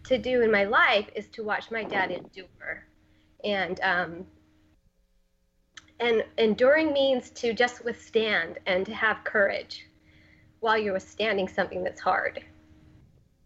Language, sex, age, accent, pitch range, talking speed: English, female, 30-49, American, 190-235 Hz, 130 wpm